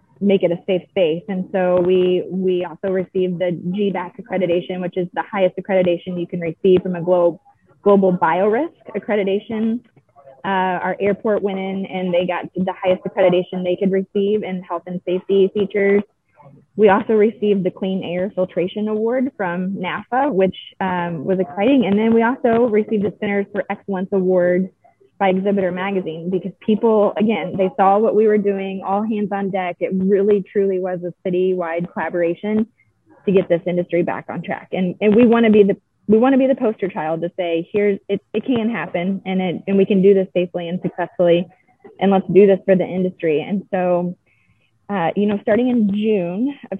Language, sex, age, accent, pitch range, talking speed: English, female, 20-39, American, 180-205 Hz, 190 wpm